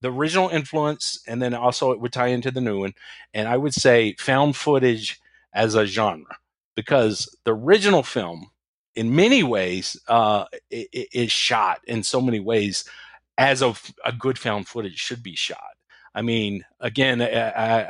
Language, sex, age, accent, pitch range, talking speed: English, male, 40-59, American, 100-130 Hz, 165 wpm